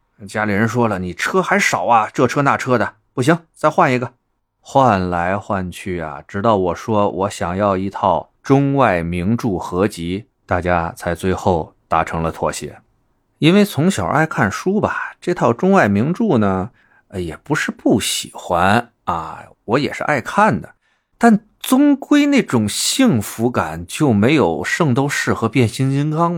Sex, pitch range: male, 95-135 Hz